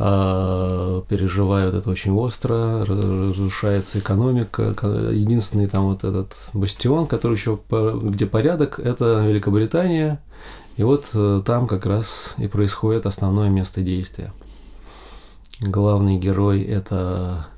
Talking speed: 100 wpm